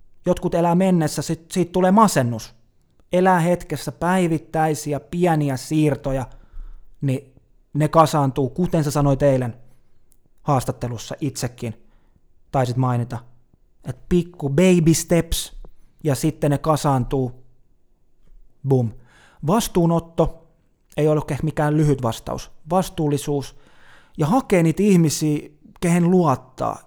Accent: native